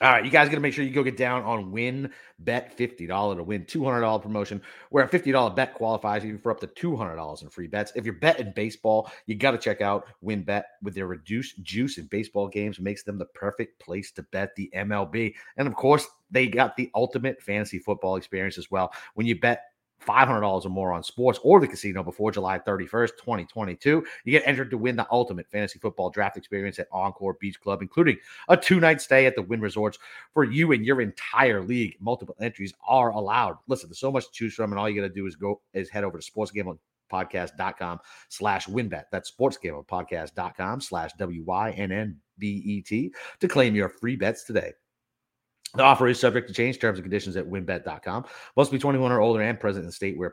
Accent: American